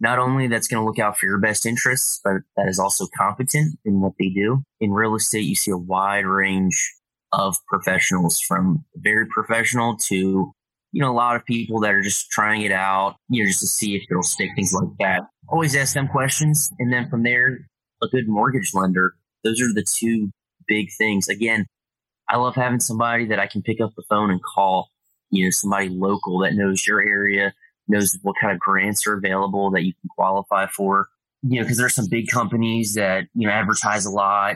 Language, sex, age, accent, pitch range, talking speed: English, male, 20-39, American, 95-120 Hz, 215 wpm